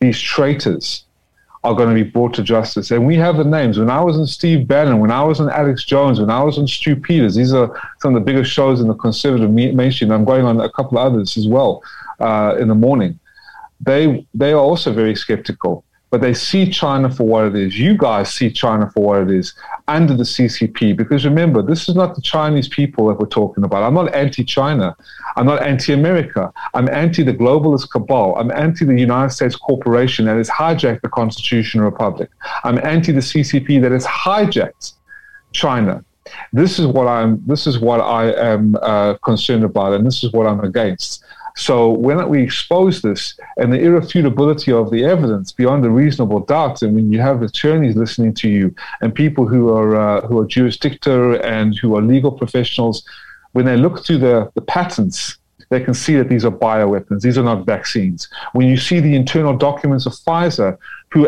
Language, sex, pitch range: English, male, 115-150 Hz